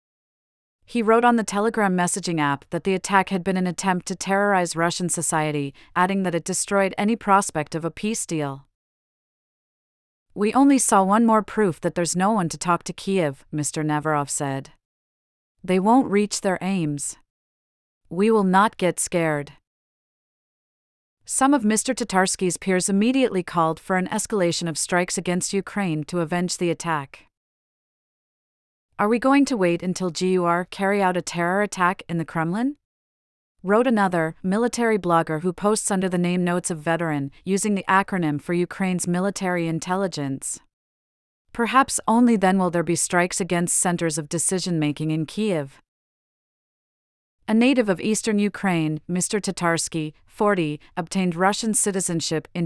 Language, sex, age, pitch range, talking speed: English, female, 40-59, 160-200 Hz, 150 wpm